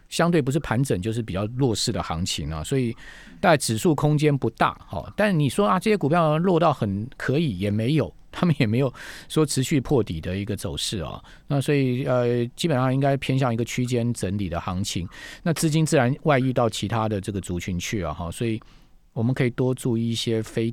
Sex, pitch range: male, 100-140 Hz